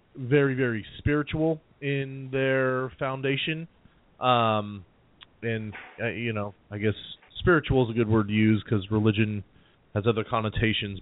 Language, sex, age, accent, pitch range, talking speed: English, male, 30-49, American, 105-120 Hz, 135 wpm